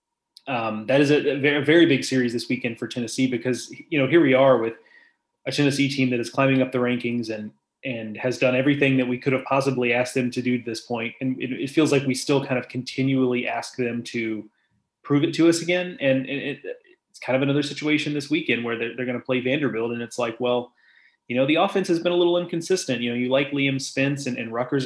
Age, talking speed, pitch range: 20-39, 240 wpm, 125-145 Hz